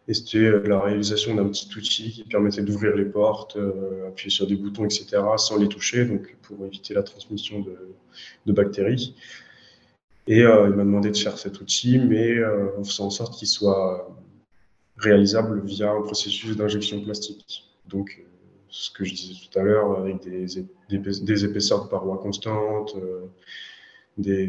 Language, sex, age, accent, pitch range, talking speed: French, male, 20-39, French, 100-105 Hz, 170 wpm